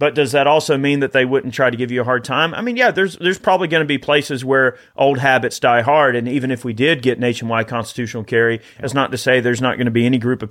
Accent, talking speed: American, 290 wpm